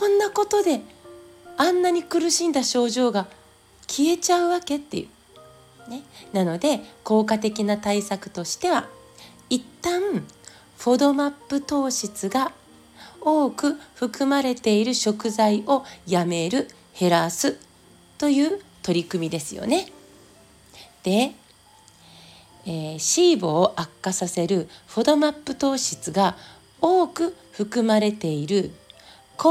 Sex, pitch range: female, 165-260 Hz